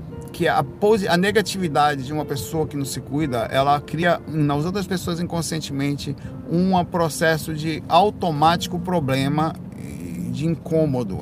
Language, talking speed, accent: Portuguese, 125 wpm, Brazilian